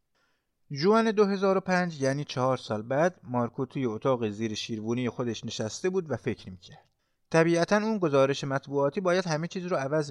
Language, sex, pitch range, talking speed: Persian, male, 120-175 Hz, 155 wpm